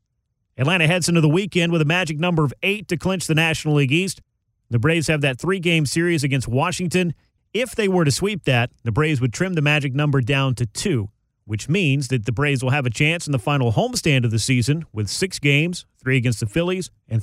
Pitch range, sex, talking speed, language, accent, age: 125-165 Hz, male, 225 wpm, English, American, 40-59